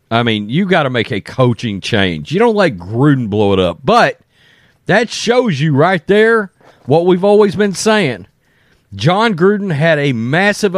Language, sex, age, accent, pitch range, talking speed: English, male, 40-59, American, 125-185 Hz, 180 wpm